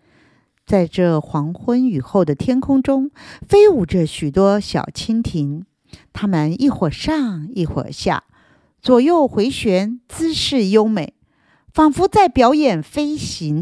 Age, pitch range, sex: 50-69, 165-245 Hz, female